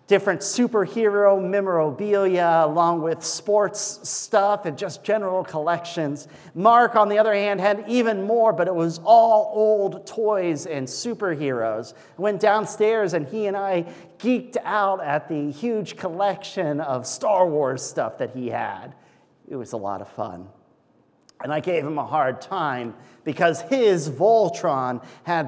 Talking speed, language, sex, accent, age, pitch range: 150 wpm, English, male, American, 40-59, 130-200 Hz